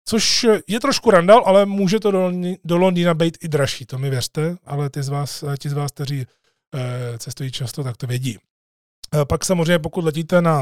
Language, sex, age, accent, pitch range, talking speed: Czech, male, 30-49, native, 145-170 Hz, 185 wpm